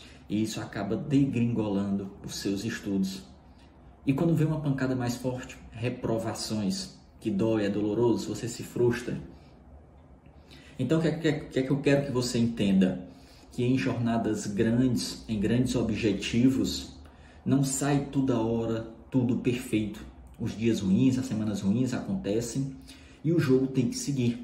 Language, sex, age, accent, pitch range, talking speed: Portuguese, male, 20-39, Brazilian, 100-160 Hz, 145 wpm